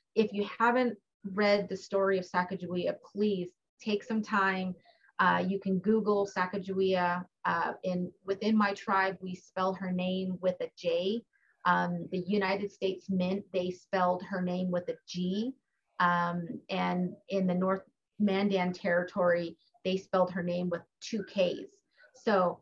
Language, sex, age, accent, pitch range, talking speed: English, female, 30-49, American, 180-200 Hz, 145 wpm